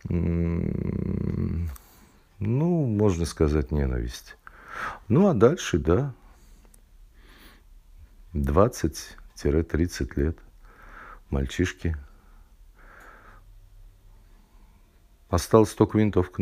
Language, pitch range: Russian, 80-100 Hz